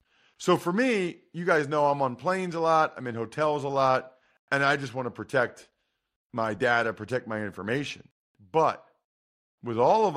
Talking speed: 185 wpm